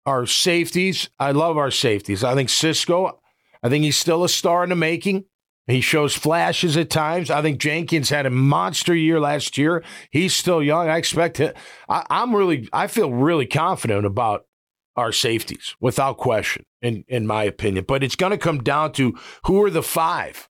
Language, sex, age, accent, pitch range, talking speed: English, male, 50-69, American, 130-165 Hz, 185 wpm